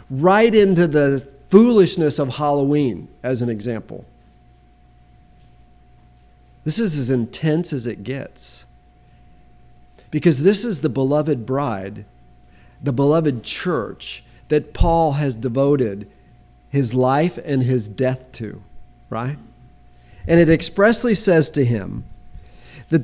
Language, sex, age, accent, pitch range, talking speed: English, male, 50-69, American, 105-170 Hz, 110 wpm